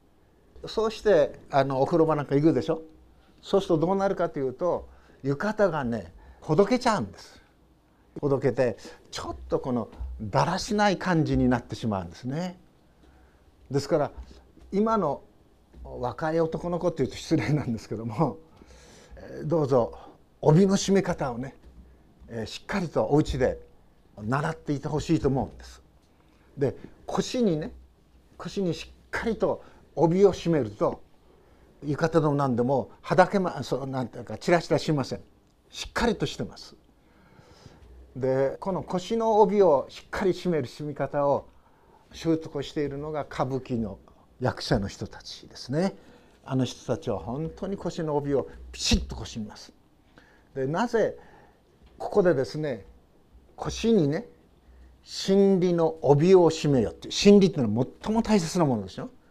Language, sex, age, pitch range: Japanese, male, 60-79, 110-175 Hz